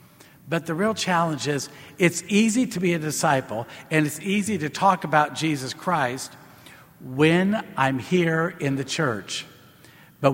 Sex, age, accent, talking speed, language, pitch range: male, 60-79, American, 150 wpm, English, 135-170 Hz